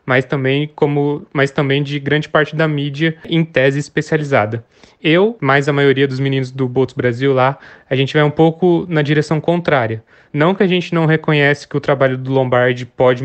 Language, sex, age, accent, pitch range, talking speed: Portuguese, male, 20-39, Brazilian, 135-165 Hz, 195 wpm